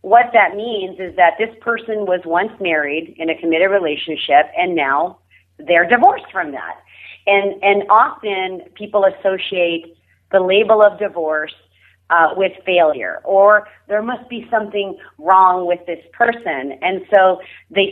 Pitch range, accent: 175-225 Hz, American